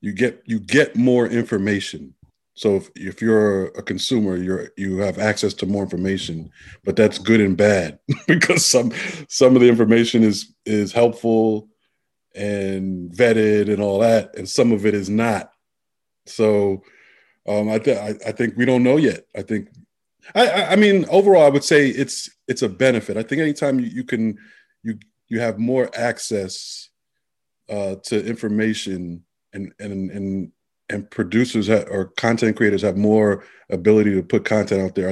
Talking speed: 170 wpm